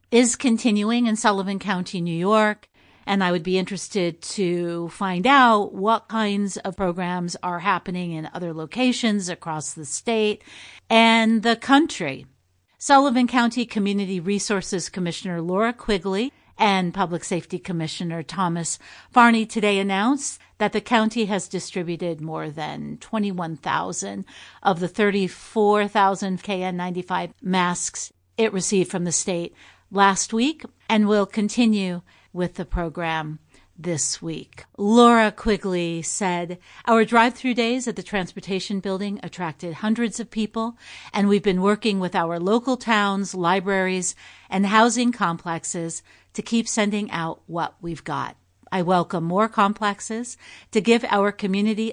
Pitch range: 175-220 Hz